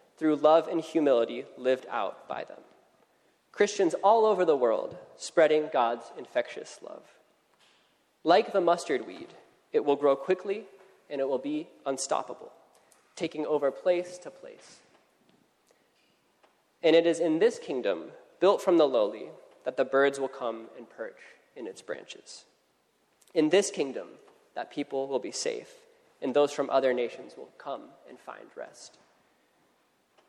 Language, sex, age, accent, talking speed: English, male, 20-39, American, 145 wpm